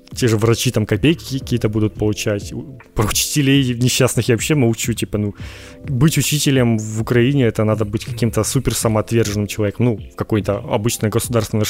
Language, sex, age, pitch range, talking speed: Ukrainian, male, 20-39, 105-125 Hz, 165 wpm